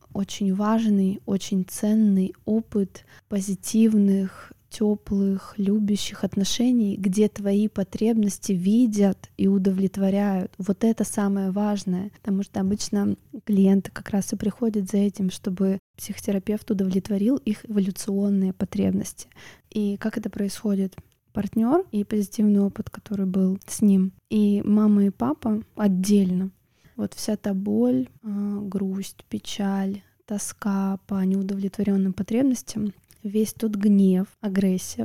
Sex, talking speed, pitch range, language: female, 115 wpm, 195-215 Hz, Russian